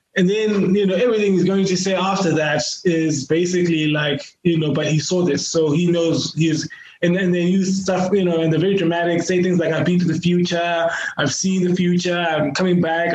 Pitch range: 165-190 Hz